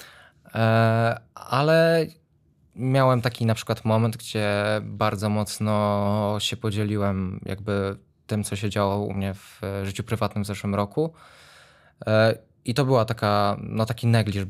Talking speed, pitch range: 130 wpm, 100-115 Hz